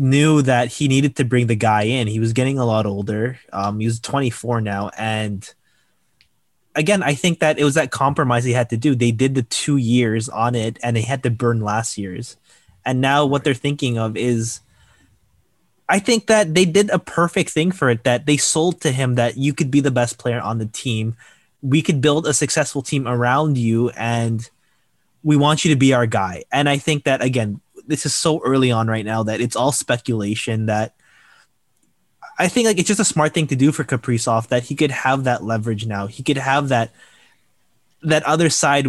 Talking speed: 215 wpm